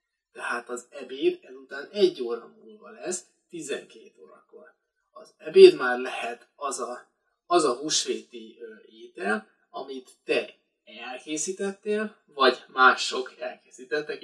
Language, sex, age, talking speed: Hungarian, male, 20-39, 115 wpm